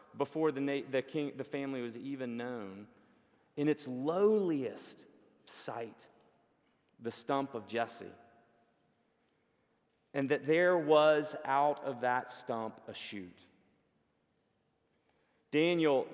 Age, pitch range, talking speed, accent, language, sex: 40-59, 130-185 Hz, 105 wpm, American, English, male